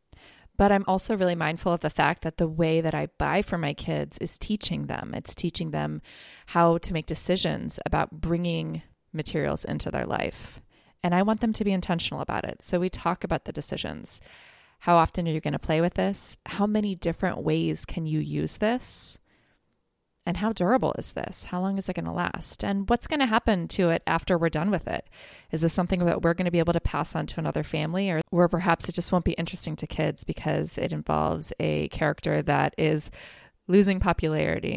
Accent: American